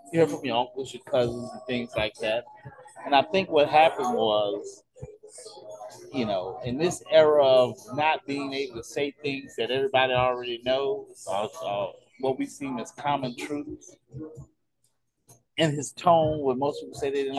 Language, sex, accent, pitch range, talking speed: English, male, American, 120-170 Hz, 160 wpm